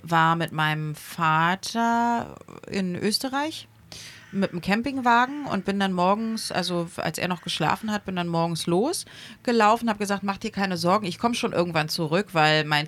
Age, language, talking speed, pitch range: 30-49, German, 170 wpm, 155-195 Hz